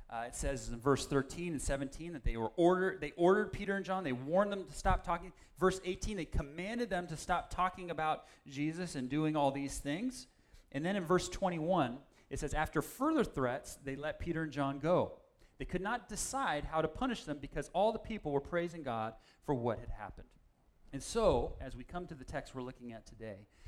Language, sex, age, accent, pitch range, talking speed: English, male, 30-49, American, 120-170 Hz, 210 wpm